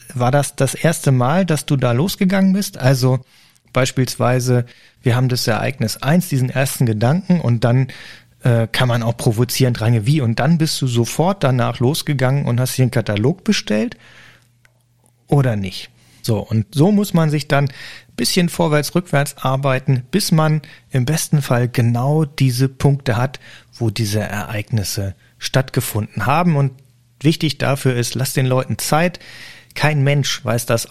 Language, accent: German, German